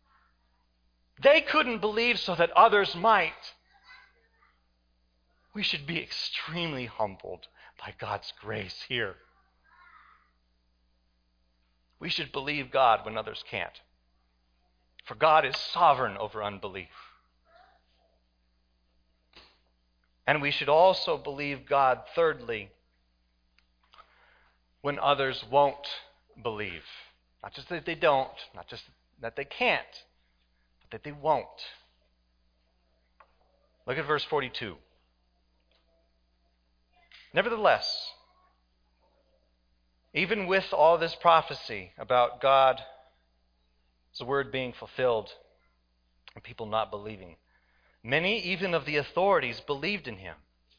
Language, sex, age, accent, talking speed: English, male, 40-59, American, 95 wpm